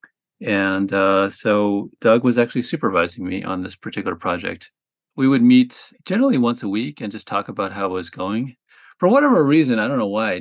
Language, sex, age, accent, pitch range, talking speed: English, male, 40-59, American, 95-125 Hz, 200 wpm